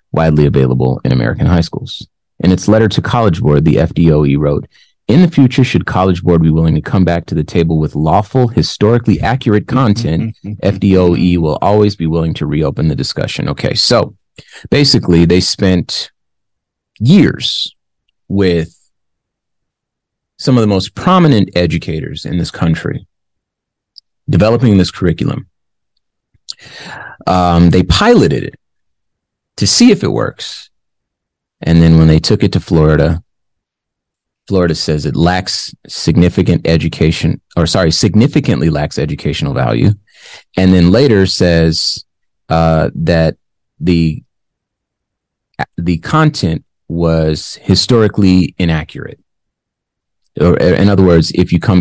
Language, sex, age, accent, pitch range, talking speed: English, male, 30-49, American, 80-100 Hz, 125 wpm